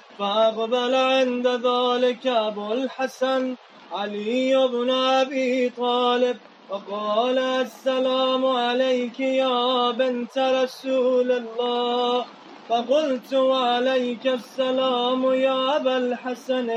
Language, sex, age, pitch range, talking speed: Urdu, male, 20-39, 235-260 Hz, 45 wpm